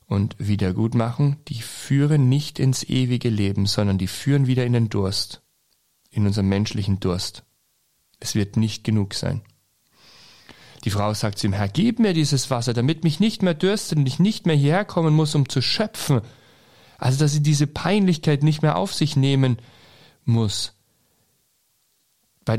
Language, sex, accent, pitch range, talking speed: German, male, German, 100-135 Hz, 165 wpm